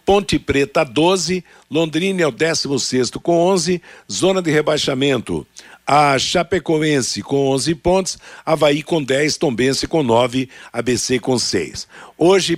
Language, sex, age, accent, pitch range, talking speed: Portuguese, male, 60-79, Brazilian, 130-170 Hz, 120 wpm